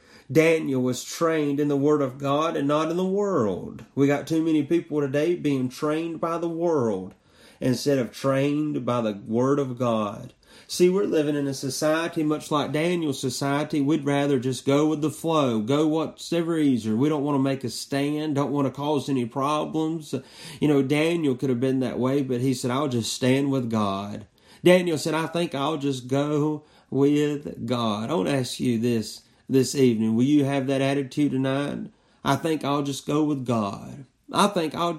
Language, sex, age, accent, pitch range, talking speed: English, male, 30-49, American, 130-155 Hz, 195 wpm